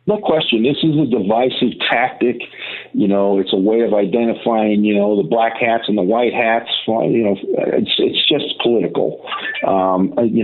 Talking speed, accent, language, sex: 180 wpm, American, English, male